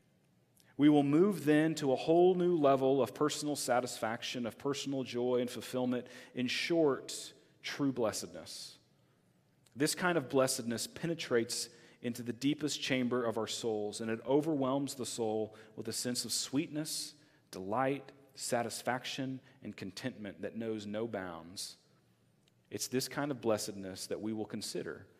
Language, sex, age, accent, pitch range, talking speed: English, male, 40-59, American, 100-130 Hz, 145 wpm